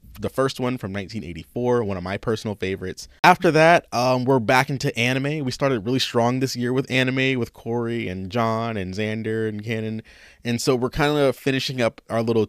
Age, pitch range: 20-39, 100-130 Hz